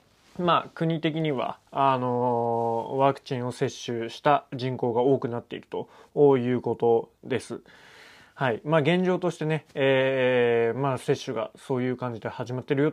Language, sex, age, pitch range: Japanese, male, 20-39, 120-150 Hz